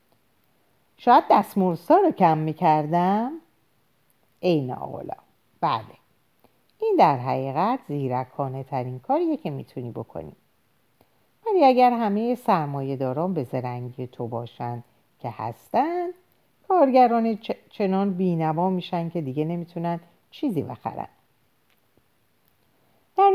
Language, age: Persian, 50-69